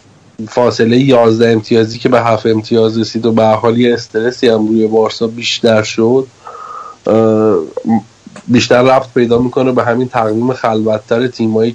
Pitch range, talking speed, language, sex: 110-125 Hz, 135 wpm, Persian, male